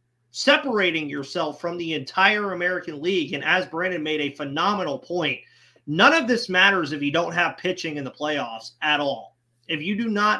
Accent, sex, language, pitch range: American, male, English, 140-185 Hz